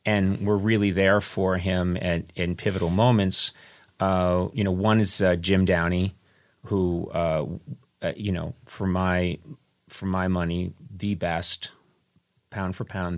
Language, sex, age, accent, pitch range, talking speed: English, male, 30-49, American, 85-95 Hz, 150 wpm